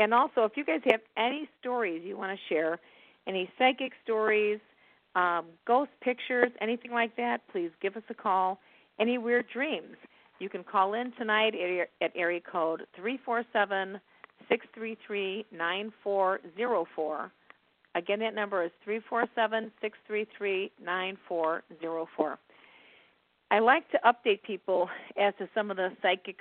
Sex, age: female, 50-69